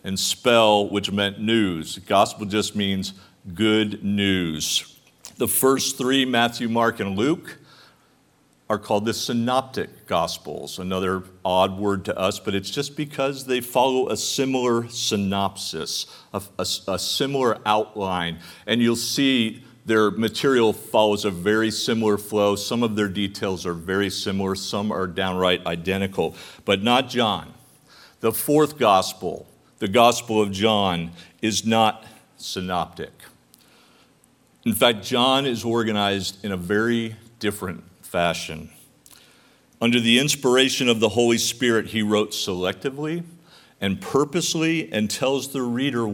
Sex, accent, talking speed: male, American, 130 wpm